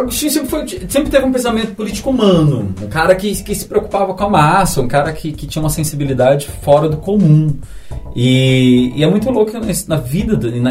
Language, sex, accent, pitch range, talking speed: Portuguese, male, Brazilian, 110-160 Hz, 215 wpm